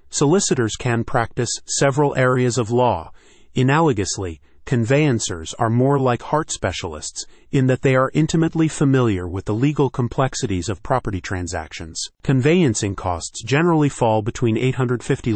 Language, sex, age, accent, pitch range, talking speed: English, male, 40-59, American, 105-135 Hz, 130 wpm